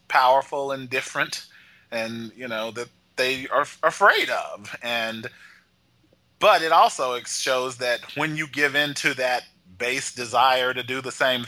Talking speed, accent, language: 155 wpm, American, English